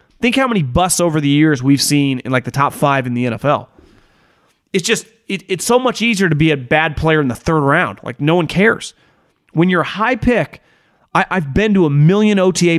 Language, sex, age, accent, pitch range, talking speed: English, male, 30-49, American, 145-185 Hz, 230 wpm